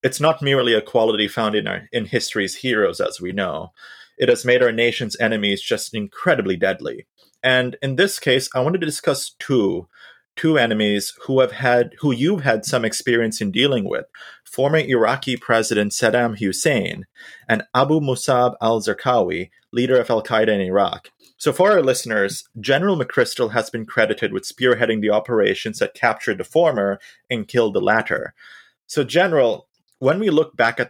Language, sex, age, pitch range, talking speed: English, male, 30-49, 105-130 Hz, 175 wpm